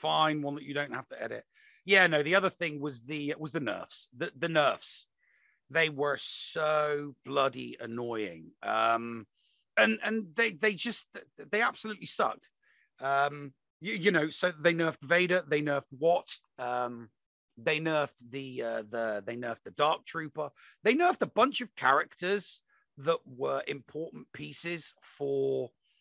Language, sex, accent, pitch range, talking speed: English, male, British, 130-180 Hz, 155 wpm